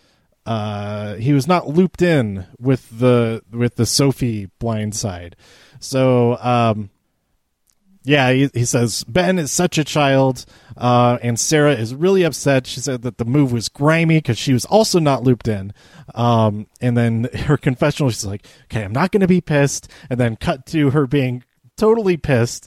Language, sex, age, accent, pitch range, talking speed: English, male, 30-49, American, 115-150 Hz, 175 wpm